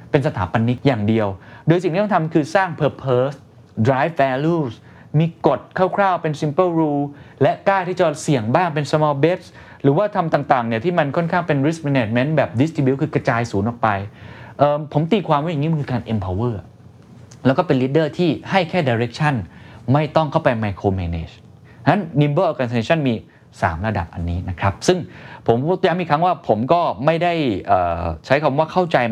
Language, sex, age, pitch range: Thai, male, 20-39, 105-150 Hz